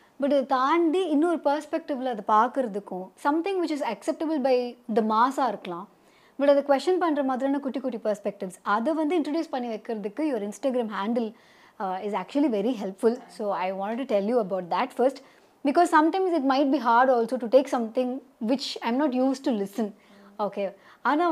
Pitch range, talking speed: 220-290 Hz, 170 wpm